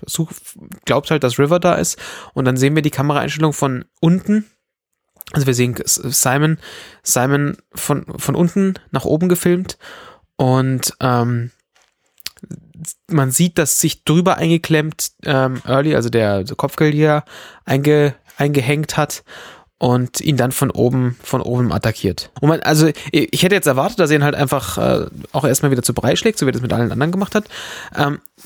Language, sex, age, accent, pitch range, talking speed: German, male, 20-39, German, 130-170 Hz, 170 wpm